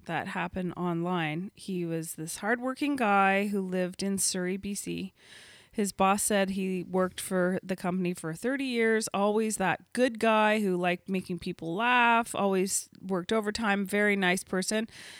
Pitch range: 175-205 Hz